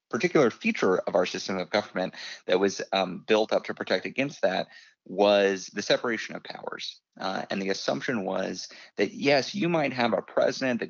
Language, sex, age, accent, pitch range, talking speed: English, male, 30-49, American, 95-120 Hz, 185 wpm